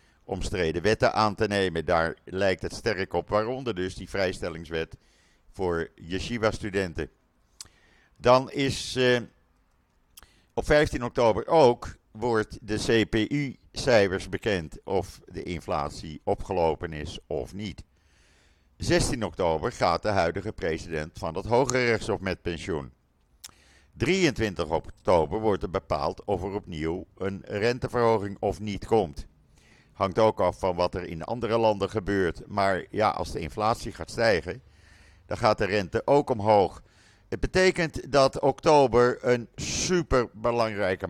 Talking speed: 130 wpm